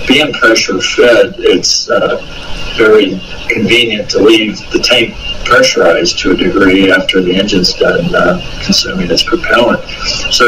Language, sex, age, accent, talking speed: English, male, 60-79, American, 135 wpm